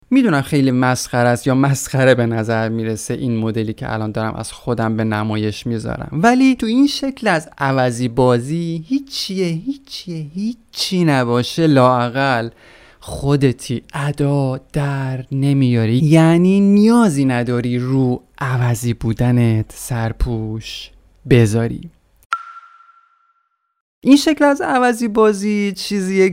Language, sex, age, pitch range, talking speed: Persian, male, 30-49, 120-185 Hz, 110 wpm